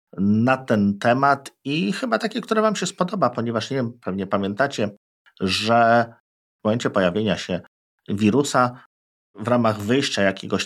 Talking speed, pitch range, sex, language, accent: 140 wpm, 95-125 Hz, male, Polish, native